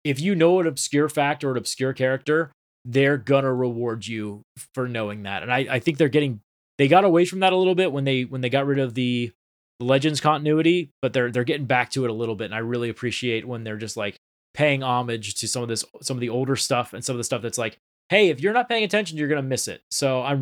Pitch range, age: 125-165 Hz, 20-39